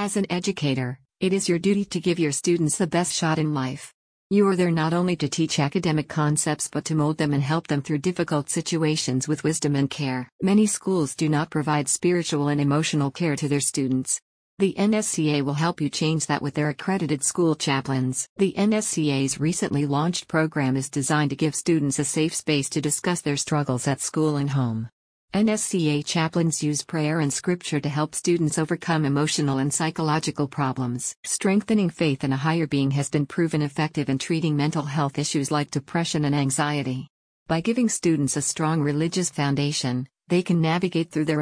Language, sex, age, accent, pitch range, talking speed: English, female, 50-69, American, 145-170 Hz, 185 wpm